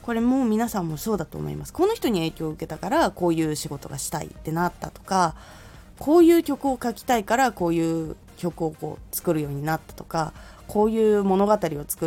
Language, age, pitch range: Japanese, 20-39, 160-245 Hz